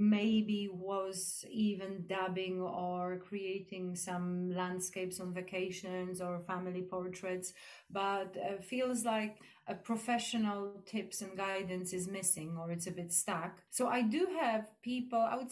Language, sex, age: English, female, 30-49